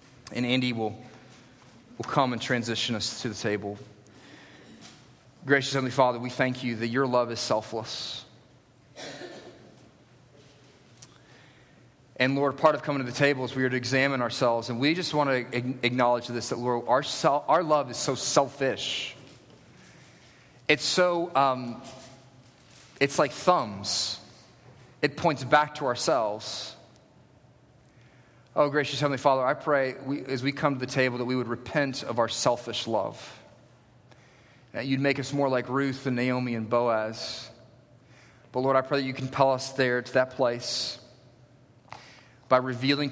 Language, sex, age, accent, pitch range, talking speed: English, male, 30-49, American, 120-135 Hz, 150 wpm